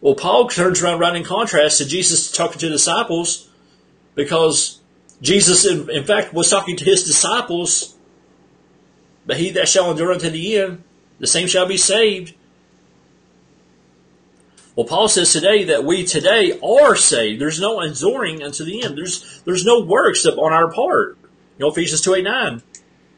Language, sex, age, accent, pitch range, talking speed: English, male, 40-59, American, 150-200 Hz, 170 wpm